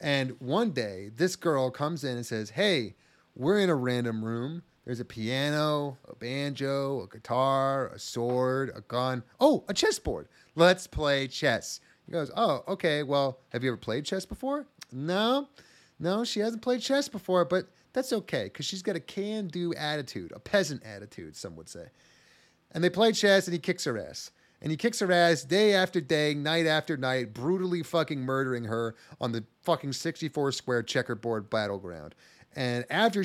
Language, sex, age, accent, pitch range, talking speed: English, male, 30-49, American, 125-185 Hz, 175 wpm